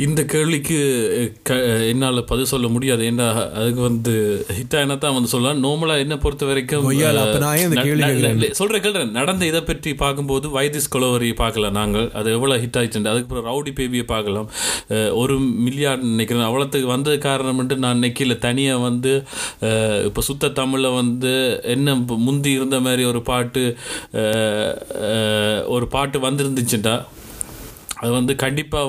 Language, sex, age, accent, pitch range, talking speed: Tamil, male, 30-49, native, 115-140 Hz, 135 wpm